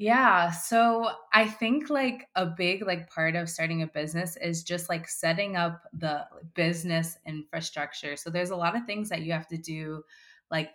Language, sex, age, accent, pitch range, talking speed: English, female, 20-39, American, 155-180 Hz, 185 wpm